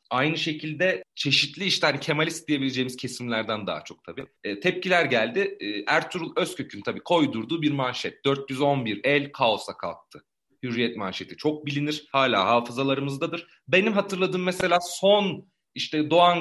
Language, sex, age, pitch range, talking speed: Turkish, male, 40-59, 125-175 Hz, 135 wpm